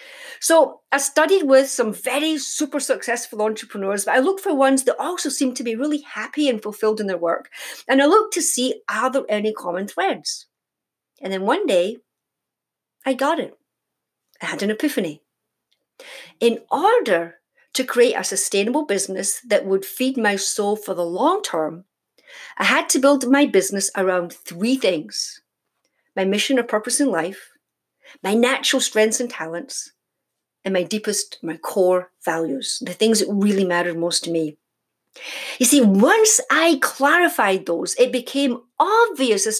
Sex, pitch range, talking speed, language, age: female, 200-300 Hz, 160 wpm, English, 50-69